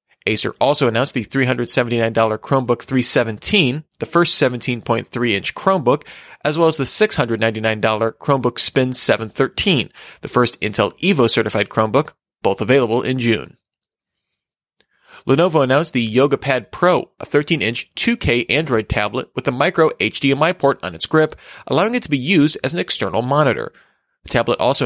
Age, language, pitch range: 30-49, English, 115-145 Hz